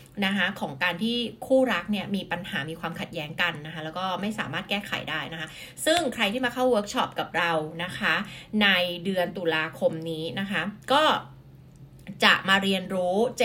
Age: 20-39